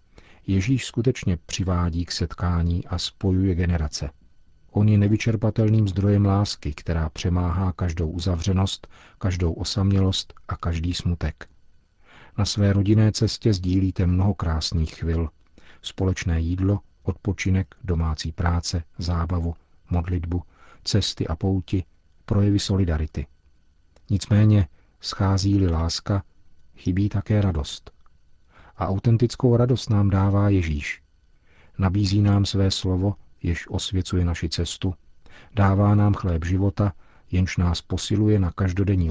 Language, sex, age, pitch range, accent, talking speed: Czech, male, 40-59, 85-100 Hz, native, 110 wpm